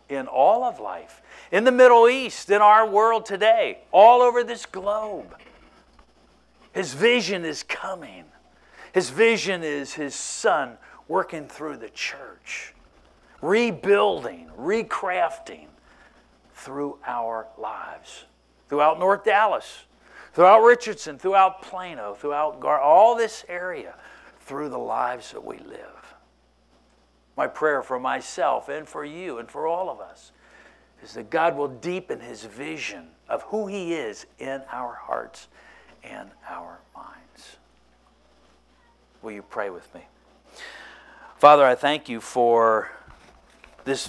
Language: English